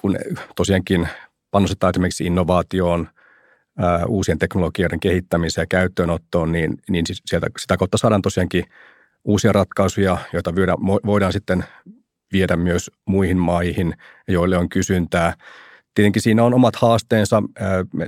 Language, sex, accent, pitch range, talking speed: Finnish, male, native, 90-100 Hz, 115 wpm